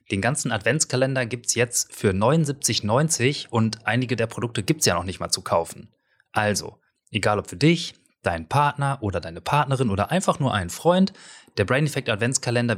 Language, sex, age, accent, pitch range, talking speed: German, male, 30-49, German, 105-140 Hz, 185 wpm